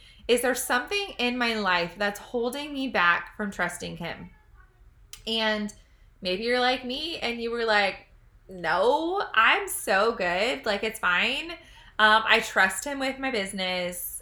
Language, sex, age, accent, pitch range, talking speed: English, female, 20-39, American, 190-250 Hz, 150 wpm